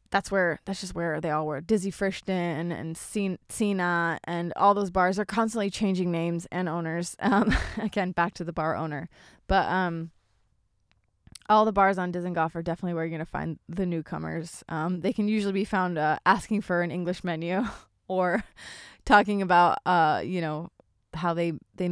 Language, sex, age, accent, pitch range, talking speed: English, female, 20-39, American, 165-200 Hz, 185 wpm